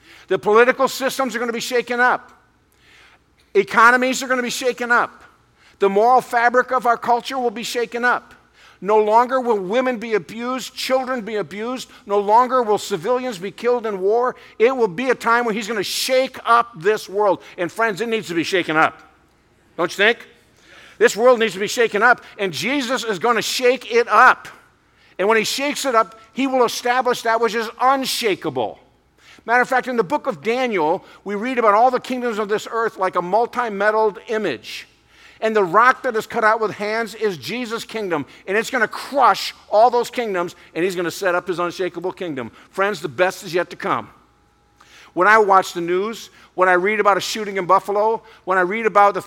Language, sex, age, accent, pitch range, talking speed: English, male, 50-69, American, 195-245 Hz, 205 wpm